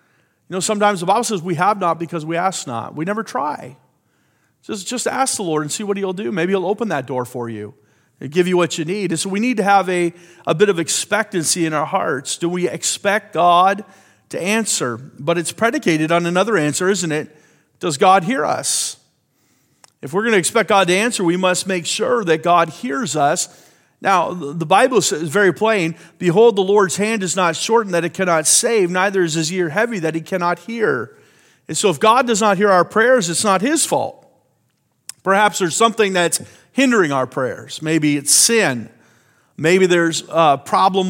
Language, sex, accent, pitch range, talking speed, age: English, male, American, 165-205 Hz, 205 wpm, 40-59